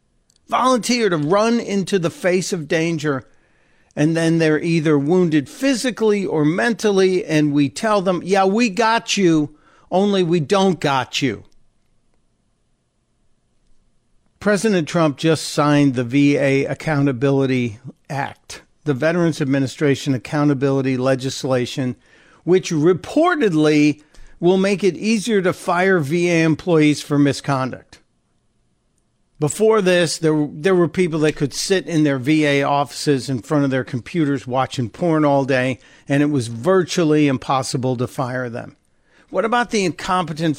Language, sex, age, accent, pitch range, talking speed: English, male, 60-79, American, 145-185 Hz, 130 wpm